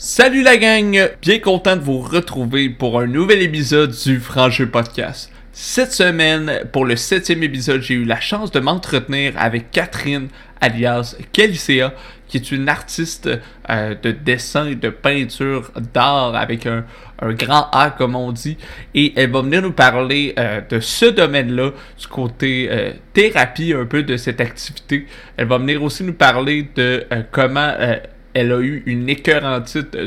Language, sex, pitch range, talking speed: French, male, 120-150 Hz, 170 wpm